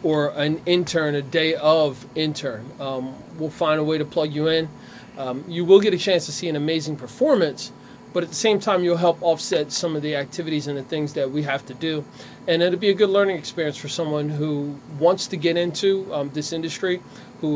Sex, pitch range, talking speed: male, 145-175 Hz, 220 wpm